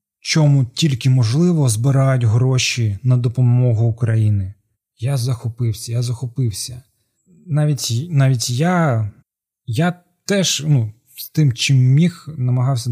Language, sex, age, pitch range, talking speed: Ukrainian, male, 20-39, 115-140 Hz, 100 wpm